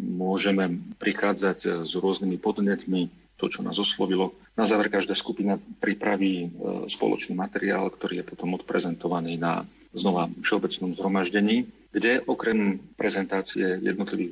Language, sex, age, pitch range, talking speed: Slovak, male, 40-59, 90-105 Hz, 115 wpm